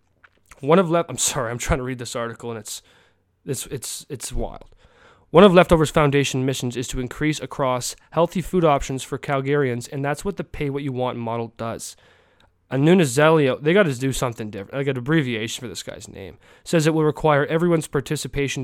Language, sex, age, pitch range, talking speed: English, male, 20-39, 125-150 Hz, 205 wpm